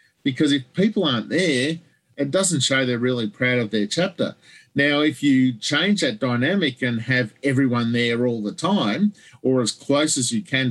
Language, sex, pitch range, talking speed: English, male, 125-155 Hz, 185 wpm